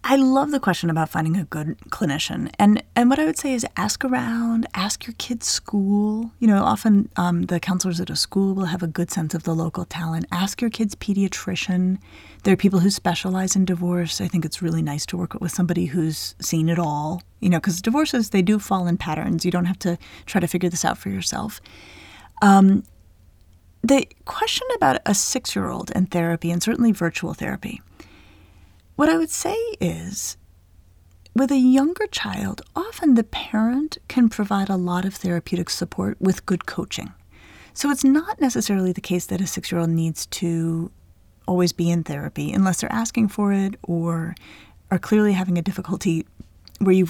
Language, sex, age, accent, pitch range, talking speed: English, female, 30-49, American, 165-215 Hz, 185 wpm